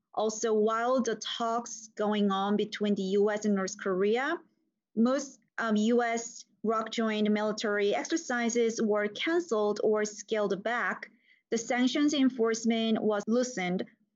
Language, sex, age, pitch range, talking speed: English, female, 30-49, 205-235 Hz, 125 wpm